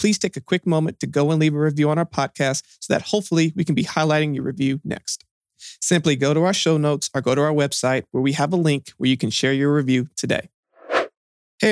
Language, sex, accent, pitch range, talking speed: English, male, American, 130-160 Hz, 245 wpm